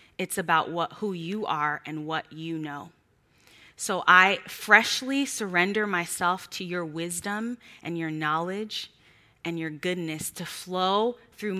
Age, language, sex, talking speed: 20-39, English, female, 140 wpm